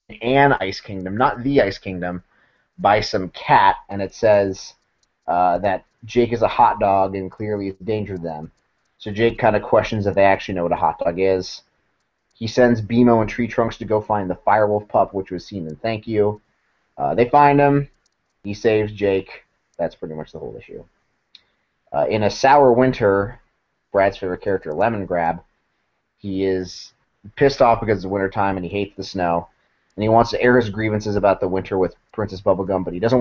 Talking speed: 195 wpm